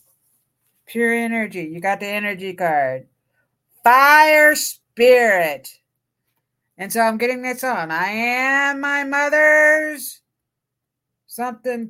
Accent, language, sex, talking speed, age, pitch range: American, English, female, 100 wpm, 50-69, 160-255 Hz